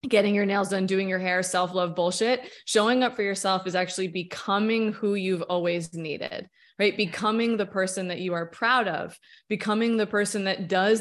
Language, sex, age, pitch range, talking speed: English, female, 20-39, 180-225 Hz, 185 wpm